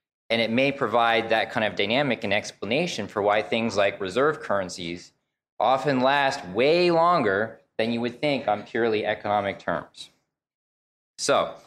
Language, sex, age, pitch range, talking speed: English, male, 20-39, 105-135 Hz, 150 wpm